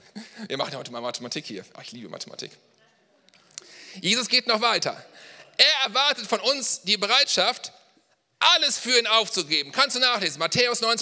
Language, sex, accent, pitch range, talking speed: German, male, German, 185-245 Hz, 160 wpm